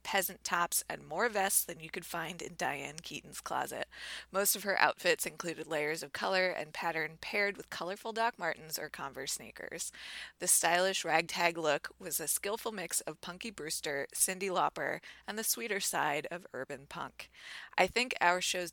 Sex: female